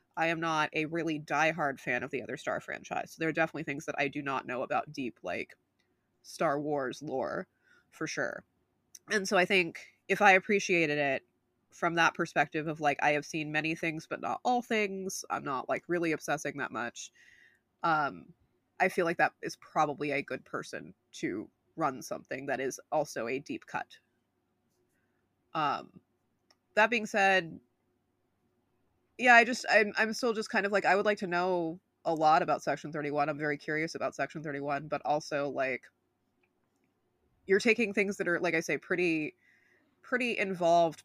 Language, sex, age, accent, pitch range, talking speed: English, female, 20-39, American, 140-175 Hz, 180 wpm